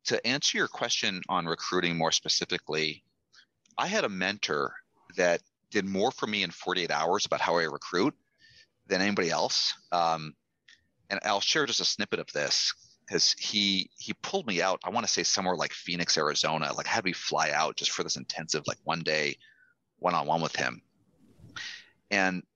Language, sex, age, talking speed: English, male, 30-49, 185 wpm